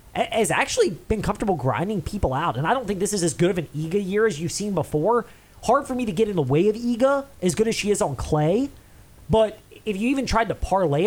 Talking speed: 255 wpm